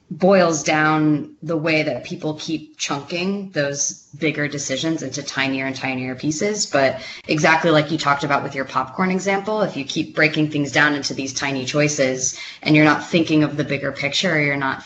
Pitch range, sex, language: 135-155 Hz, female, English